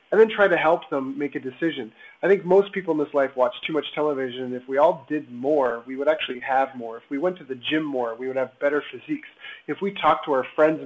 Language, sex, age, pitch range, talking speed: English, male, 30-49, 130-155 Hz, 265 wpm